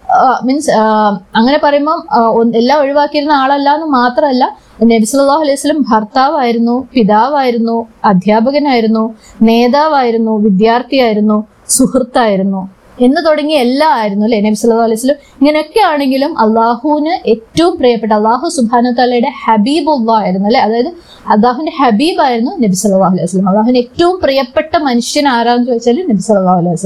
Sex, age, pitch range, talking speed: female, 20-39, 220-290 Hz, 105 wpm